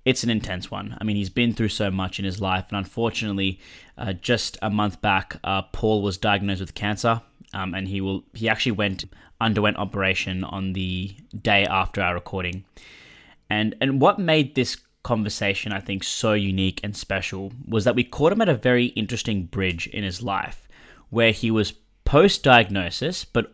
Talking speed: 185 wpm